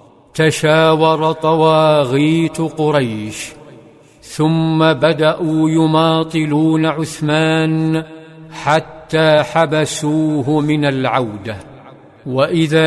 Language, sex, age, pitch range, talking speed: Arabic, male, 50-69, 150-160 Hz, 55 wpm